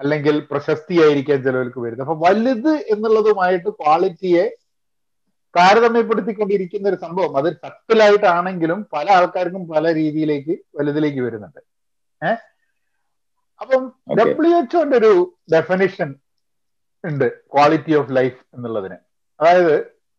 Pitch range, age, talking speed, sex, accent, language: 145-205 Hz, 50-69, 90 wpm, male, native, Malayalam